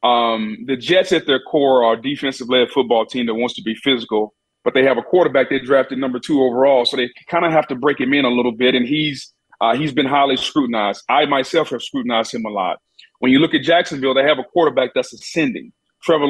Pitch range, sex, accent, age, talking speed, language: 130-165 Hz, male, American, 30-49, 235 wpm, English